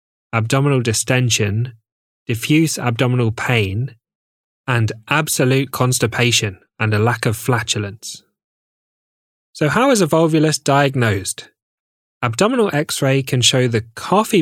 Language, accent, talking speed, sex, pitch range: English, British, 105 wpm, male, 115-140 Hz